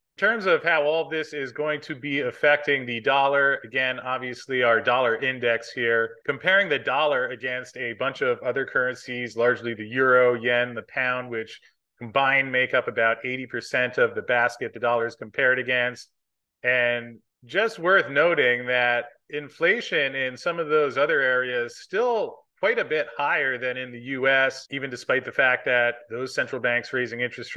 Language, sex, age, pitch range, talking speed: English, male, 30-49, 120-135 Hz, 175 wpm